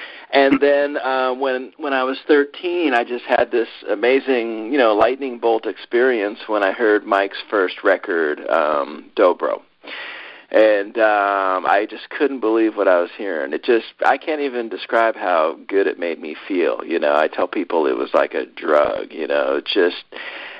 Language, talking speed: English, 180 wpm